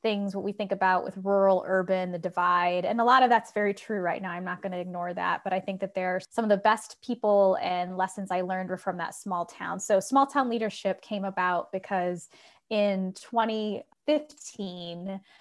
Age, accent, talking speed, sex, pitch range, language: 20-39, American, 210 wpm, female, 185-220 Hz, English